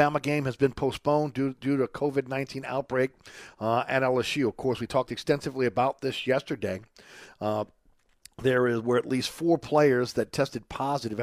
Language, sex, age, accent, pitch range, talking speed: English, male, 50-69, American, 115-135 Hz, 175 wpm